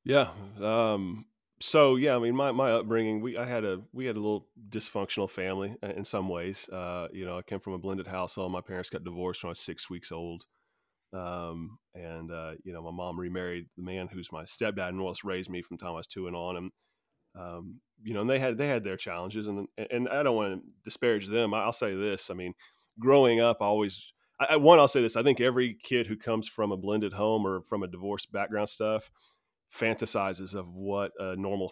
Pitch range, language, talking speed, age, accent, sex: 95-115 Hz, English, 225 wpm, 30-49, American, male